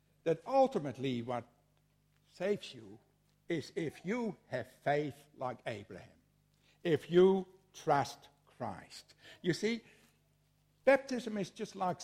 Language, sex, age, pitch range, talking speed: English, male, 60-79, 140-200 Hz, 110 wpm